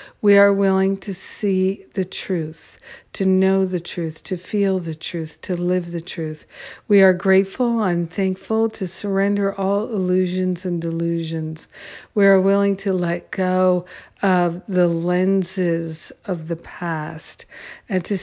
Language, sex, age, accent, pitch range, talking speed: English, female, 60-79, American, 170-195 Hz, 145 wpm